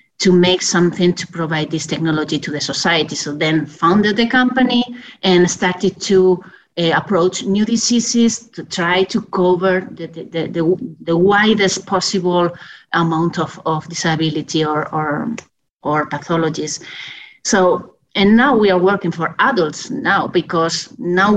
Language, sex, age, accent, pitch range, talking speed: English, female, 30-49, Spanish, 160-190 Hz, 145 wpm